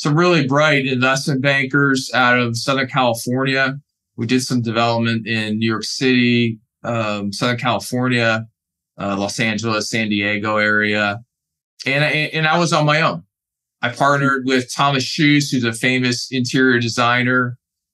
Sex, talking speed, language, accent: male, 145 wpm, English, American